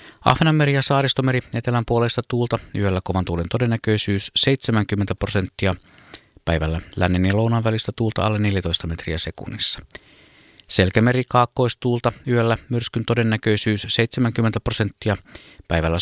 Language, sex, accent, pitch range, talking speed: Finnish, male, native, 95-120 Hz, 110 wpm